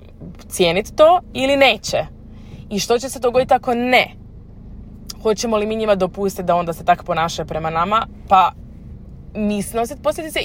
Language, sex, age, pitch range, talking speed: Croatian, female, 20-39, 175-245 Hz, 155 wpm